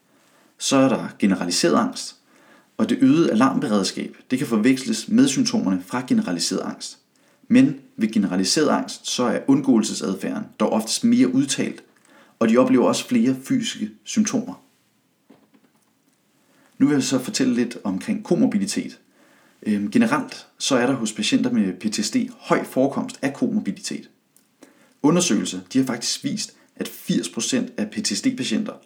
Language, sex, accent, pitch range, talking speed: Danish, male, native, 215-275 Hz, 135 wpm